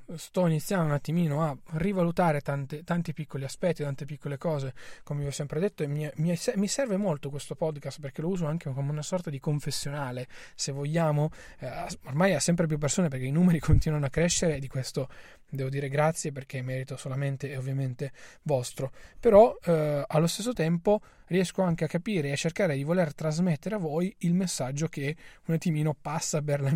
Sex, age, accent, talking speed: male, 20-39, native, 190 wpm